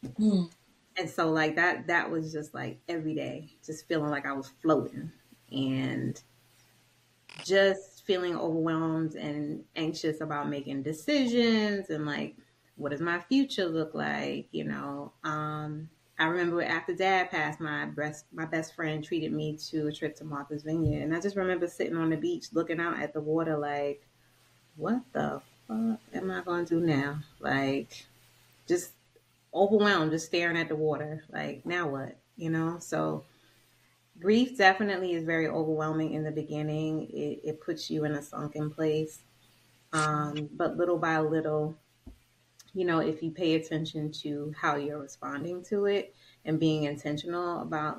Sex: female